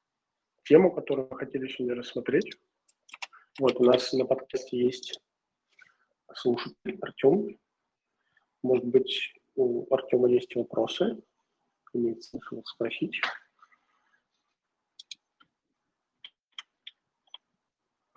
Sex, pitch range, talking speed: male, 125-150 Hz, 75 wpm